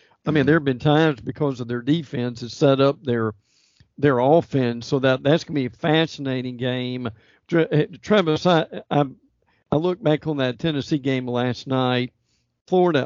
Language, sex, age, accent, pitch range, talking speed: English, male, 50-69, American, 125-155 Hz, 175 wpm